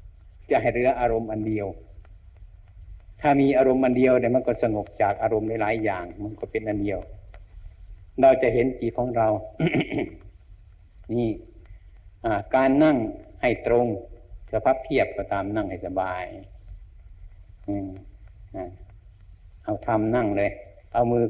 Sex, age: male, 60-79